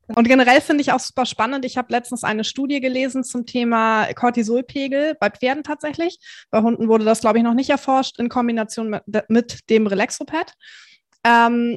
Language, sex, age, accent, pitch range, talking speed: German, female, 20-39, German, 215-255 Hz, 175 wpm